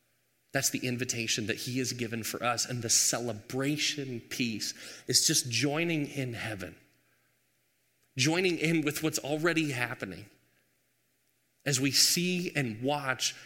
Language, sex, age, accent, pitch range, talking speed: English, male, 30-49, American, 135-180 Hz, 130 wpm